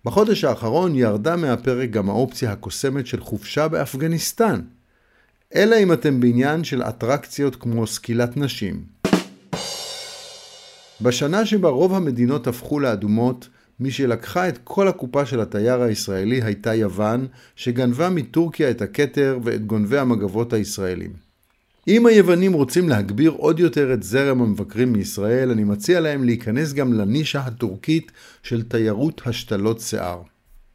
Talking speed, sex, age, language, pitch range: 125 wpm, male, 50-69, Hebrew, 110-150 Hz